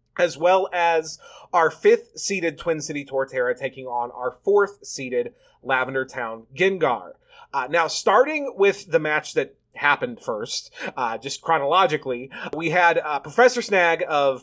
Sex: male